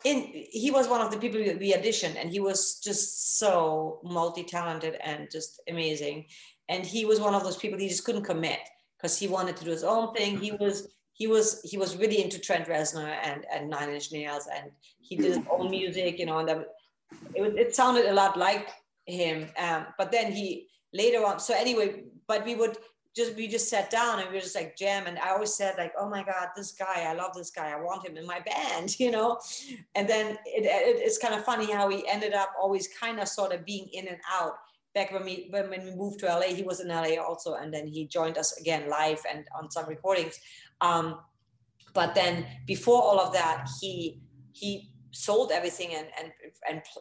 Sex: female